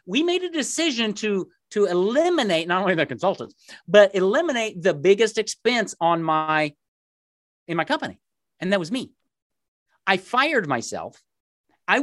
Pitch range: 155-220 Hz